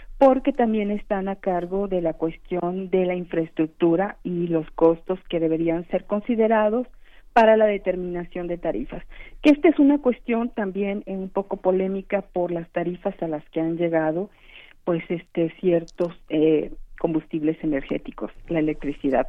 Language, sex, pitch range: Spanish, female, 180-235 Hz